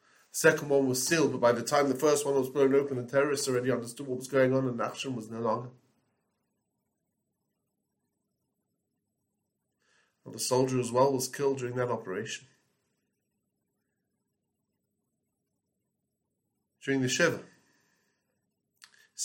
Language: English